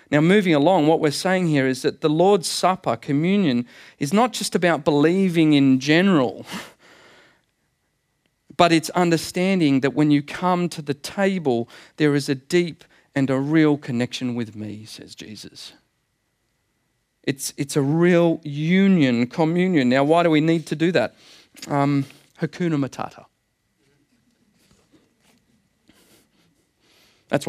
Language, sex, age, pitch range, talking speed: English, male, 40-59, 140-180 Hz, 130 wpm